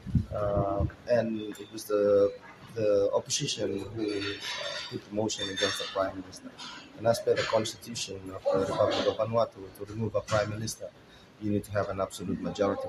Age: 30-49